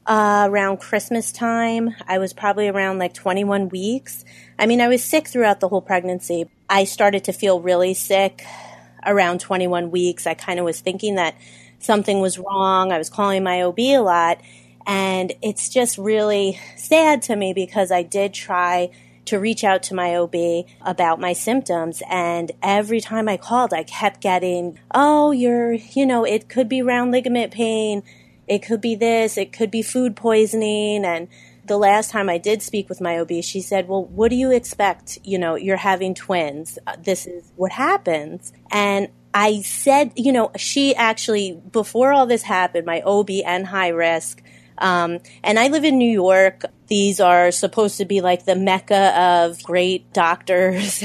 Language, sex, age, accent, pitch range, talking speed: English, female, 30-49, American, 180-220 Hz, 180 wpm